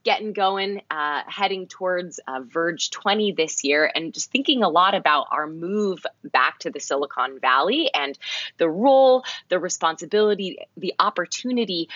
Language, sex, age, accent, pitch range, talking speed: English, female, 20-39, American, 155-210 Hz, 150 wpm